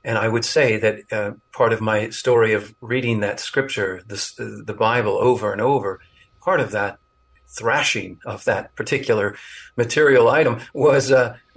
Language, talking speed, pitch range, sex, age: English, 160 wpm, 105-120 Hz, male, 50-69